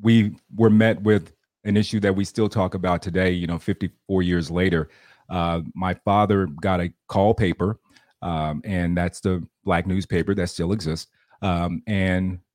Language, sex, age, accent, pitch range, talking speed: English, male, 40-59, American, 90-105 Hz, 165 wpm